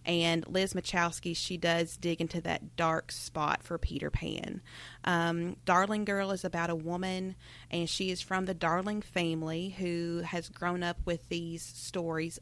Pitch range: 160-185 Hz